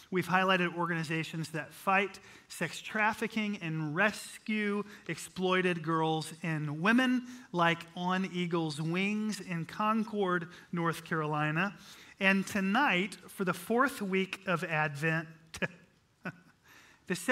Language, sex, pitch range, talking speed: English, male, 165-200 Hz, 105 wpm